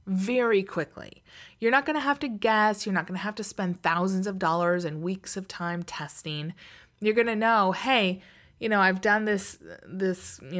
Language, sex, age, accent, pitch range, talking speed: English, female, 20-39, American, 170-225 Hz, 205 wpm